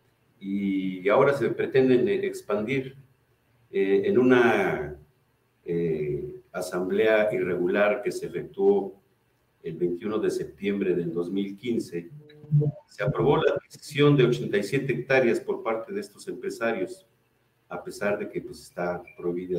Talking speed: 120 wpm